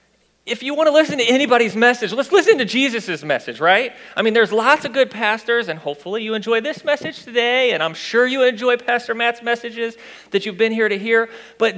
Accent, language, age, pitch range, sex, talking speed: American, English, 40-59, 200-260 Hz, male, 220 wpm